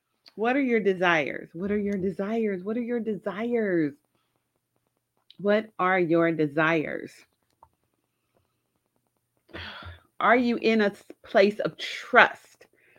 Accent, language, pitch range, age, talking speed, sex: American, English, 190-275 Hz, 40-59, 105 wpm, female